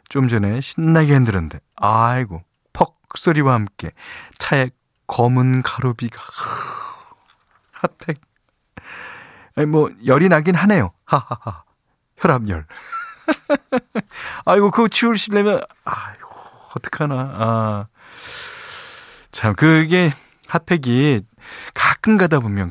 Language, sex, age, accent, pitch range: Korean, male, 40-59, native, 100-155 Hz